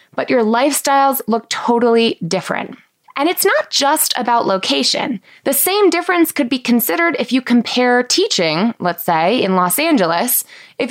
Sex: female